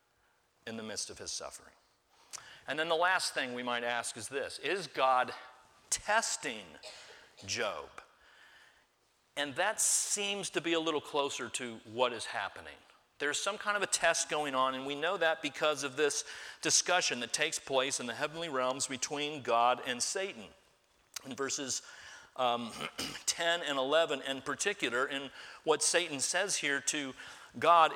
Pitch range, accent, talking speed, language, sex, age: 130-165 Hz, American, 160 wpm, English, male, 40-59